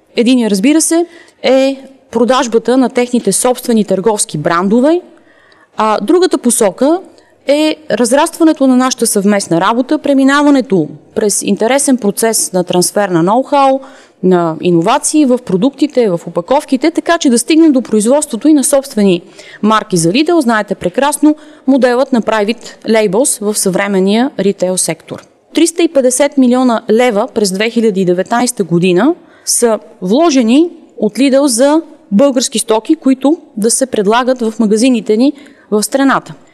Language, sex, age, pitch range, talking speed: Bulgarian, female, 30-49, 215-290 Hz, 125 wpm